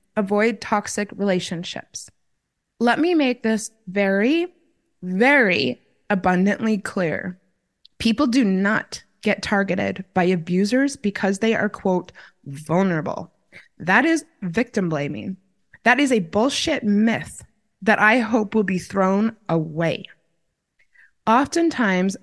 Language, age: English, 20-39